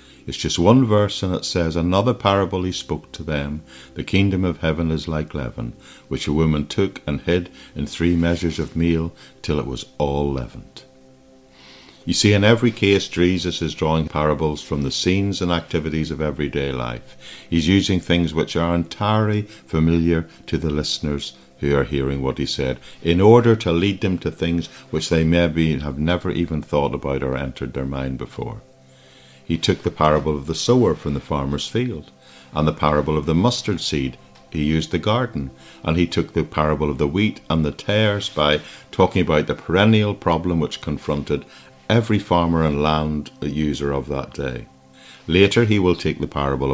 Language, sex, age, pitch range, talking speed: English, male, 60-79, 70-90 Hz, 185 wpm